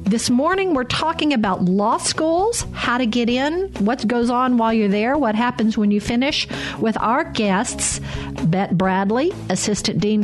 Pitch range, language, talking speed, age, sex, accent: 185-245 Hz, English, 170 wpm, 50-69, female, American